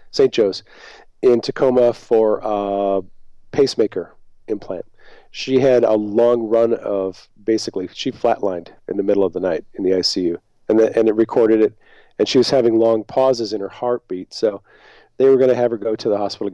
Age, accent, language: 40-59, American, English